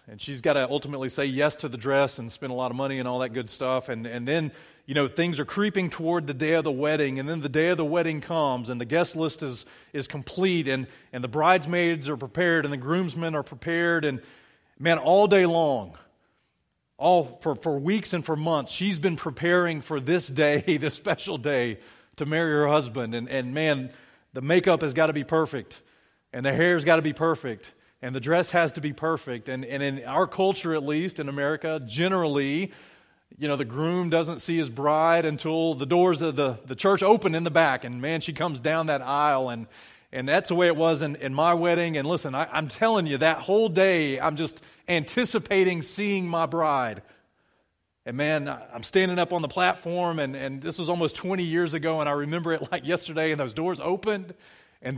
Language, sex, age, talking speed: English, male, 40-59, 220 wpm